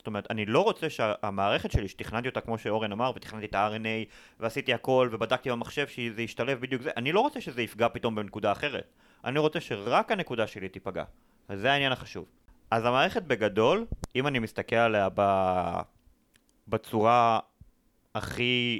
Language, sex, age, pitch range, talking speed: Hebrew, male, 30-49, 105-150 Hz, 155 wpm